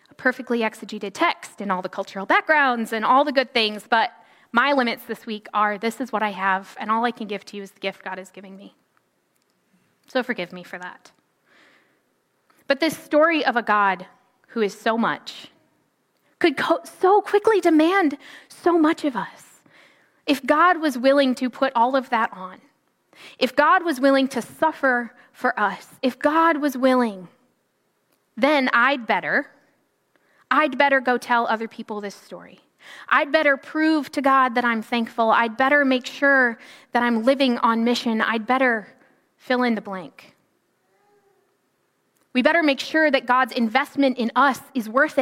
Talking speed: 170 wpm